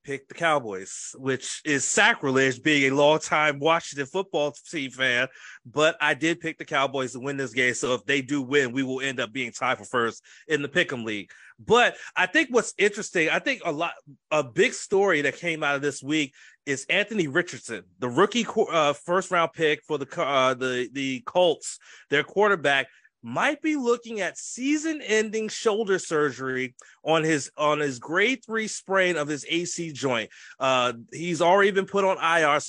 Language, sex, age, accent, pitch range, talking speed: English, male, 30-49, American, 140-180 Hz, 185 wpm